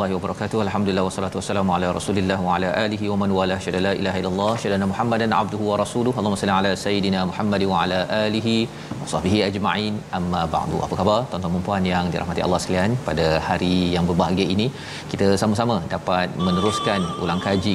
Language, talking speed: Malayalam, 185 wpm